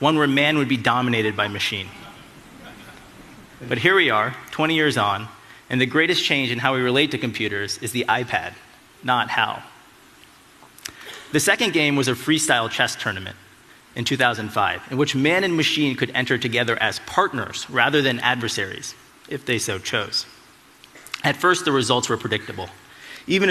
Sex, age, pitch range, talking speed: male, 30-49, 115-145 Hz, 165 wpm